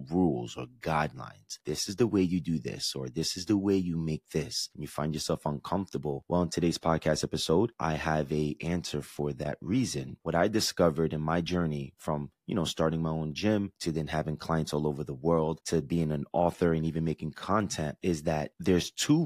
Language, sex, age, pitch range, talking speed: English, male, 30-49, 80-90 Hz, 210 wpm